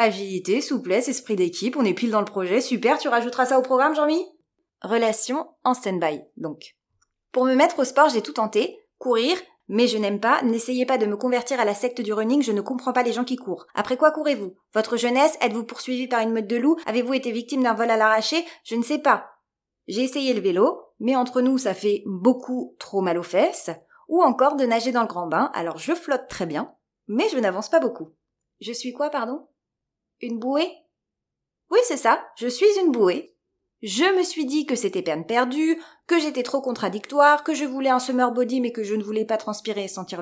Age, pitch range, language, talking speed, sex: 20-39, 220-285 Hz, French, 220 wpm, female